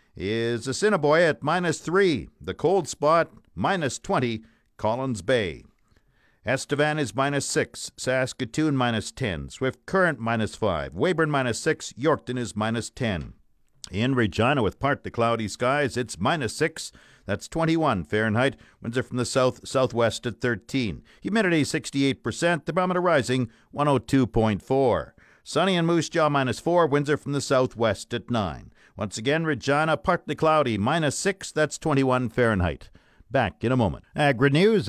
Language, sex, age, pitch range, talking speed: English, male, 50-69, 115-170 Hz, 145 wpm